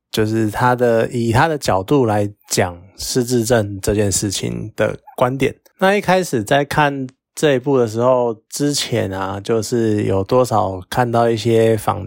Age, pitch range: 20-39, 105-140 Hz